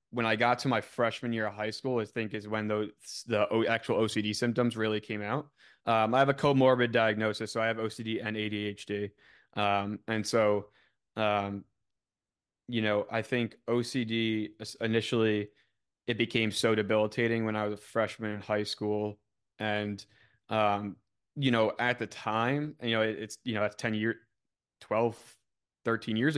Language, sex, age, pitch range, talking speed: English, male, 20-39, 105-115 Hz, 170 wpm